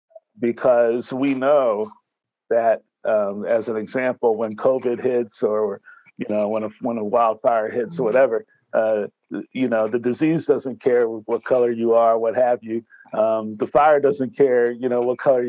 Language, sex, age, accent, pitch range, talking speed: English, male, 50-69, American, 115-135 Hz, 175 wpm